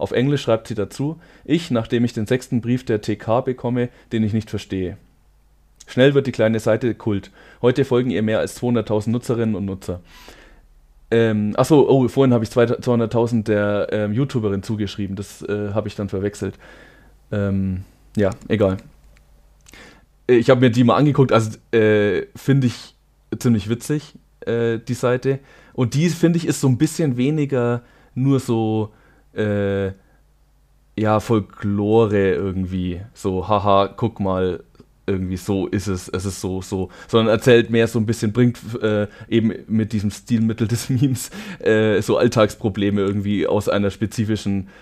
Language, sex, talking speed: German, male, 155 wpm